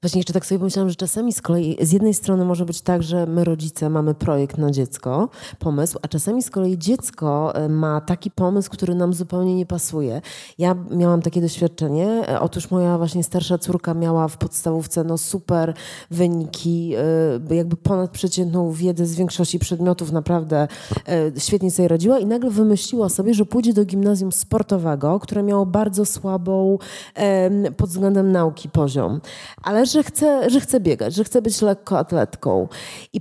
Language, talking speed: Polish, 160 wpm